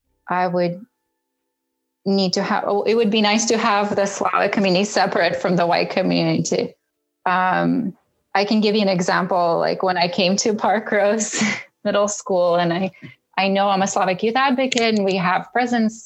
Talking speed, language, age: 185 wpm, English, 20-39